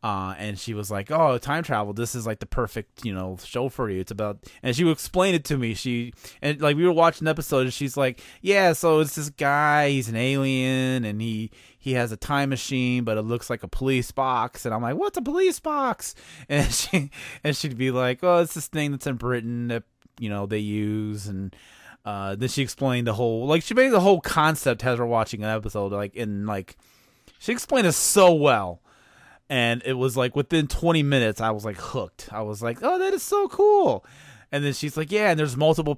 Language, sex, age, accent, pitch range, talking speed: English, male, 20-39, American, 110-155 Hz, 235 wpm